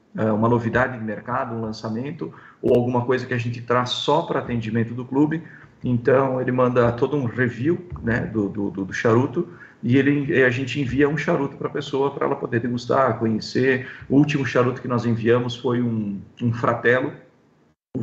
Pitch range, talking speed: 115-140 Hz, 185 wpm